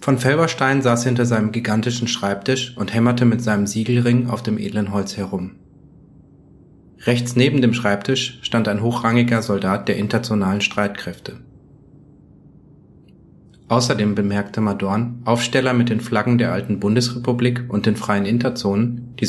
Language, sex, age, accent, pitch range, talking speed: German, male, 30-49, German, 105-130 Hz, 135 wpm